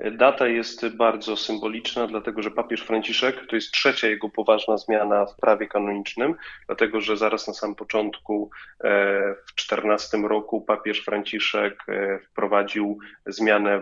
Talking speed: 130 wpm